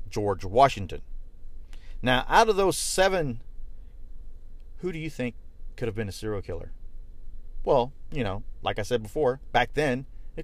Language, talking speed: English, 155 wpm